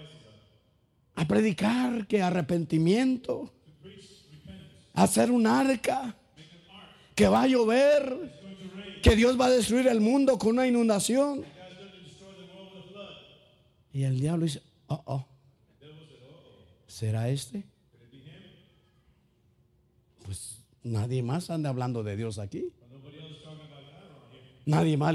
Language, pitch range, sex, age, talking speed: English, 145-195 Hz, male, 50-69, 90 wpm